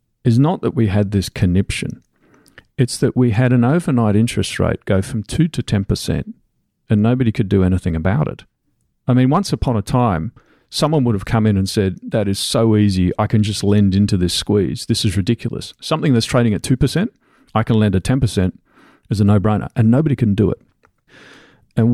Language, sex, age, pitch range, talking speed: English, male, 40-59, 100-125 Hz, 200 wpm